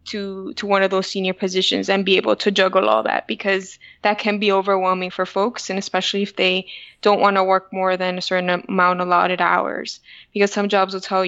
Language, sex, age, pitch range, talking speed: English, female, 20-39, 190-215 Hz, 215 wpm